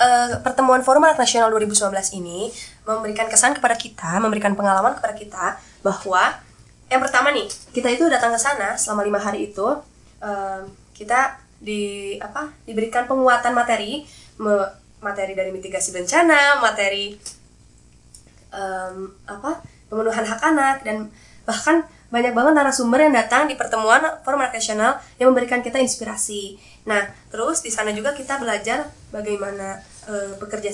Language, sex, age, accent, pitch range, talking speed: Indonesian, female, 20-39, native, 205-255 Hz, 140 wpm